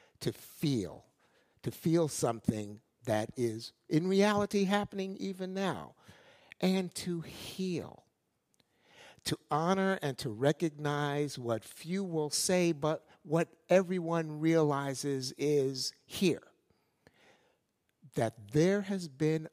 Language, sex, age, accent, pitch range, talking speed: English, male, 60-79, American, 125-180 Hz, 105 wpm